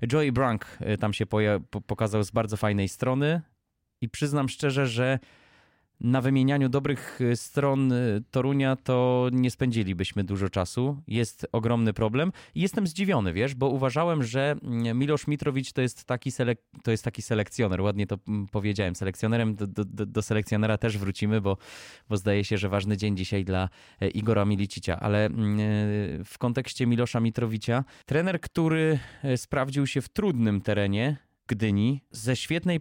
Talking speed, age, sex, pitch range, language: 140 wpm, 20-39, male, 105-135 Hz, English